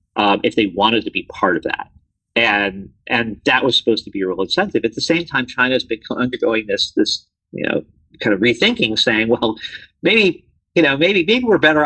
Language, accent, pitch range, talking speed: English, American, 110-150 Hz, 215 wpm